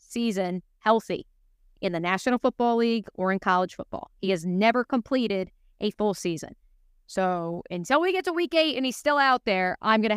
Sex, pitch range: female, 185-220 Hz